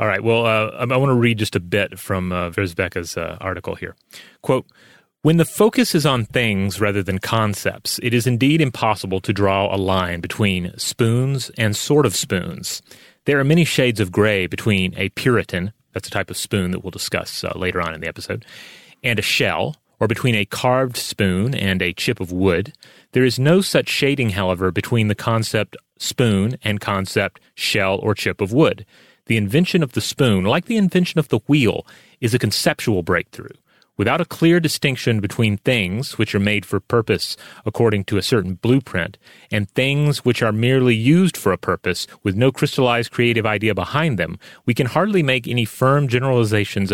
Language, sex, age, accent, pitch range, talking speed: English, male, 30-49, American, 100-130 Hz, 190 wpm